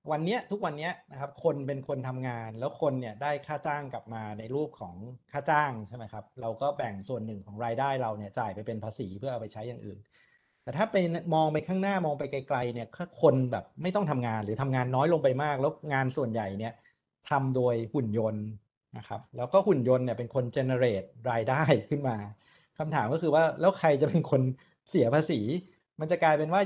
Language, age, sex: Thai, 60-79, male